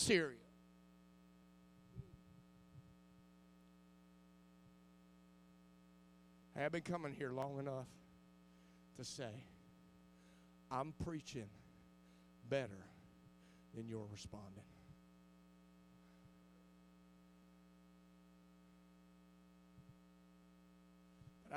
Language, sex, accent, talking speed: English, male, American, 45 wpm